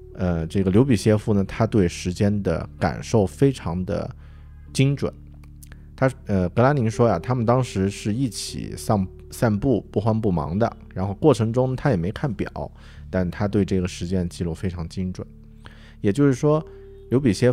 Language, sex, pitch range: Chinese, male, 90-115 Hz